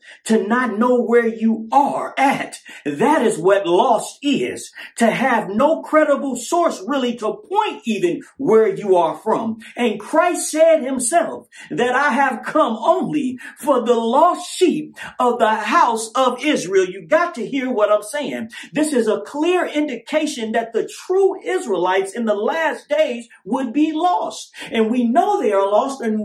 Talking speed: 165 wpm